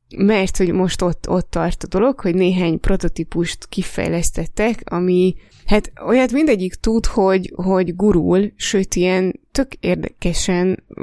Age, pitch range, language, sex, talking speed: 20-39, 170-195 Hz, Hungarian, female, 130 wpm